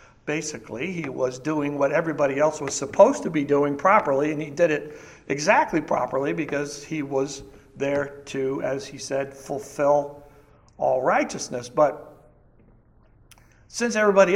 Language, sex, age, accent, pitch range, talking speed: English, male, 60-79, American, 140-165 Hz, 140 wpm